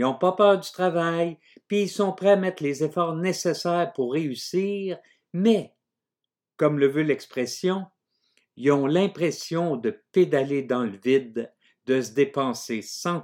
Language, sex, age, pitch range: French, male, 50-69, 135-190 Hz